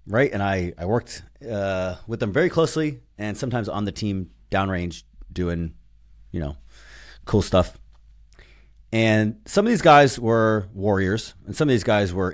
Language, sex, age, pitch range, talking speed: English, male, 30-49, 85-110 Hz, 165 wpm